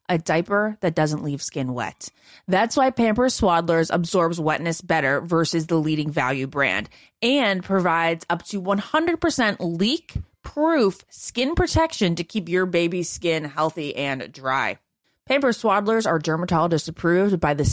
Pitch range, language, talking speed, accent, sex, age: 165-230 Hz, English, 140 wpm, American, female, 20-39